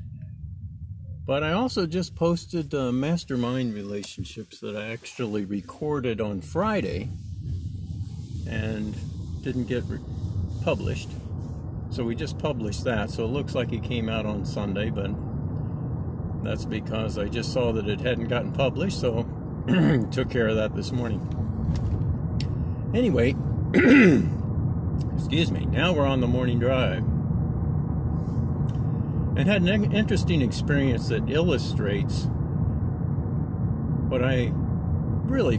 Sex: male